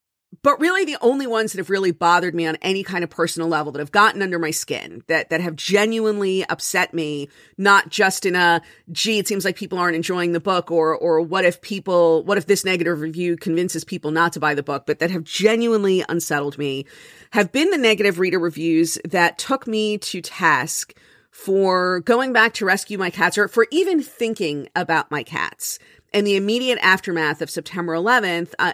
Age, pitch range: 40-59, 170-220 Hz